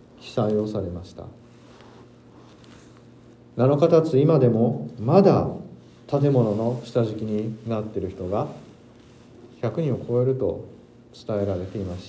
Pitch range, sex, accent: 105-130 Hz, male, native